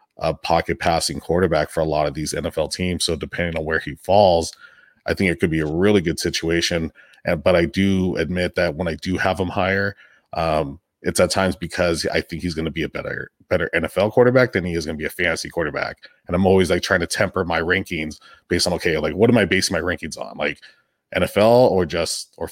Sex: male